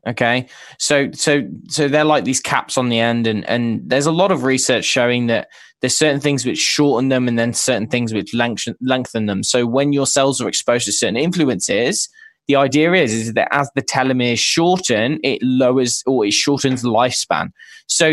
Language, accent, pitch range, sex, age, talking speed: English, British, 120-150 Hz, male, 20-39, 195 wpm